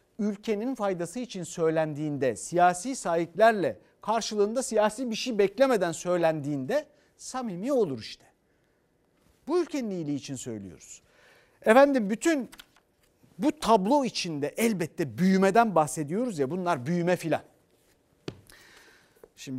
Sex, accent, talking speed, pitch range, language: male, native, 100 wpm, 135-205 Hz, Turkish